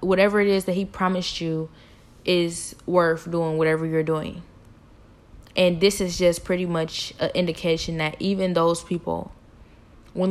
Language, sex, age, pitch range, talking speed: English, female, 10-29, 165-200 Hz, 150 wpm